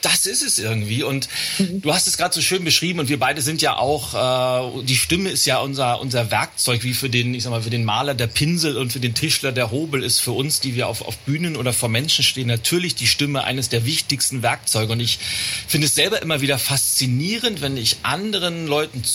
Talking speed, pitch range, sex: 230 wpm, 120-155 Hz, male